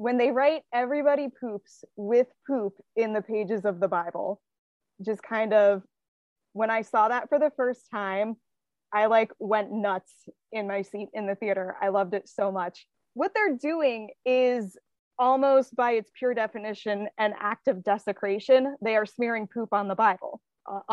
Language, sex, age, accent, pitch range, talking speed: English, female, 20-39, American, 205-260 Hz, 170 wpm